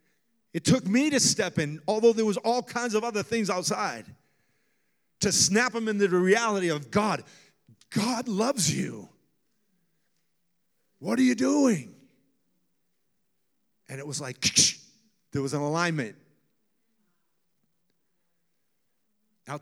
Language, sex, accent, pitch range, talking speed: English, male, American, 155-220 Hz, 120 wpm